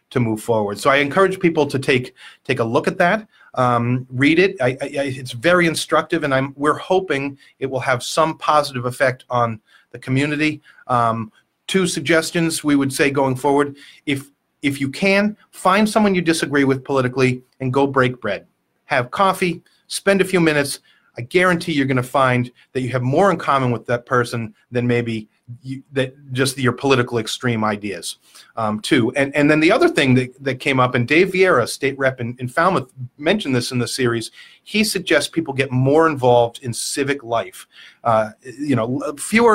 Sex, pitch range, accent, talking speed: male, 125-160 Hz, American, 185 wpm